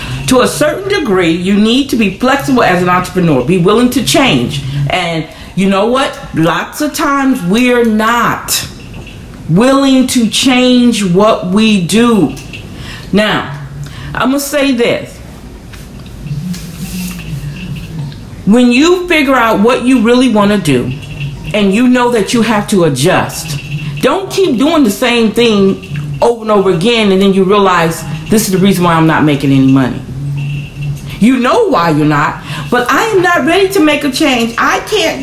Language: English